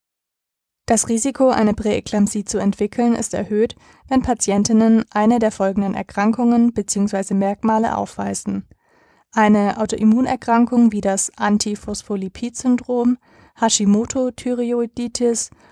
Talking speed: 90 wpm